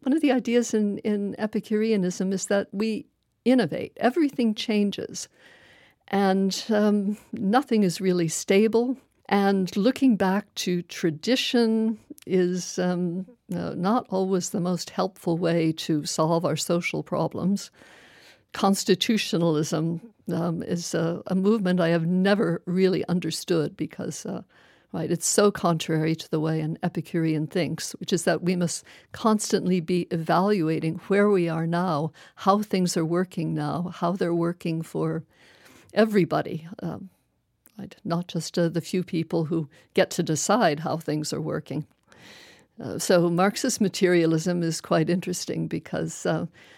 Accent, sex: American, female